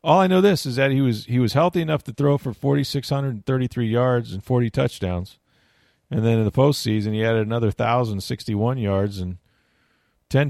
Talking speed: 225 wpm